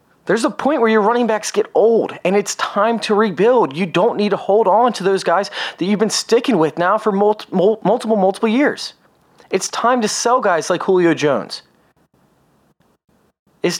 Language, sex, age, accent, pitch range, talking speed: English, male, 30-49, American, 190-230 Hz, 185 wpm